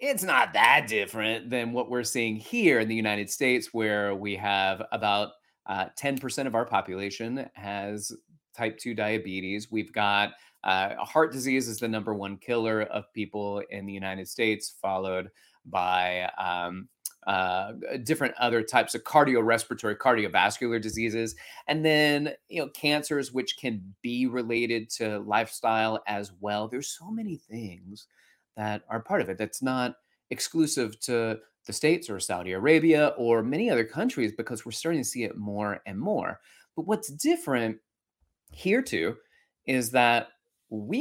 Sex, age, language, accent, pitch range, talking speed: male, 30-49, English, American, 105-130 Hz, 155 wpm